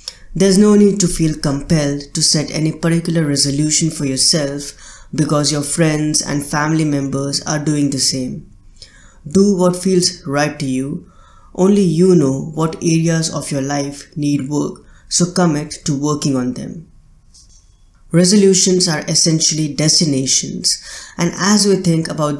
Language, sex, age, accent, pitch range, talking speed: English, female, 20-39, Indian, 140-175 Hz, 145 wpm